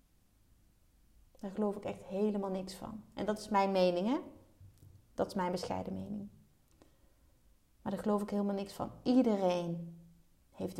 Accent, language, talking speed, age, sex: Dutch, Dutch, 150 wpm, 30-49, female